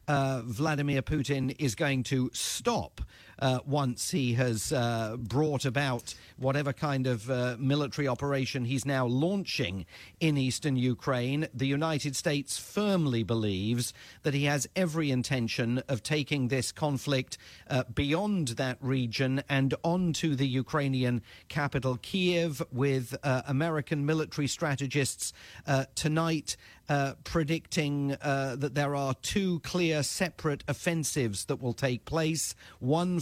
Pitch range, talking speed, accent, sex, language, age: 130-155 Hz, 130 wpm, British, male, English, 40-59